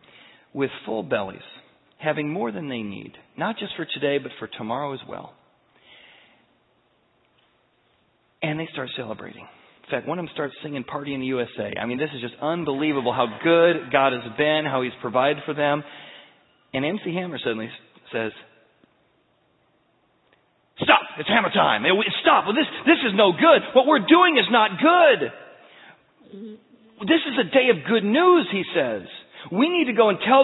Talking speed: 170 wpm